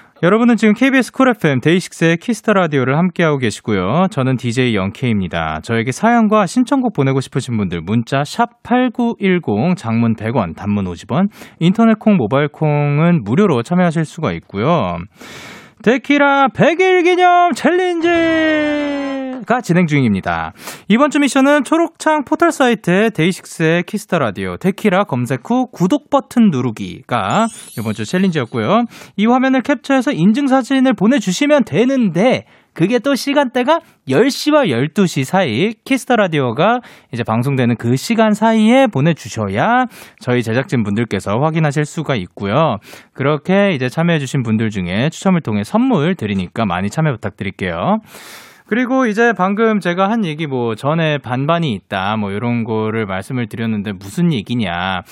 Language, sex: Korean, male